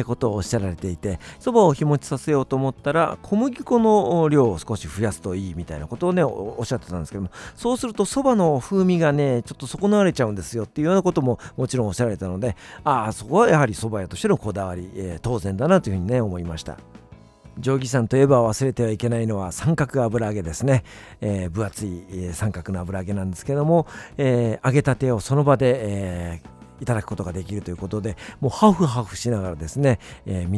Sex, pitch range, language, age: male, 100-140 Hz, Japanese, 50-69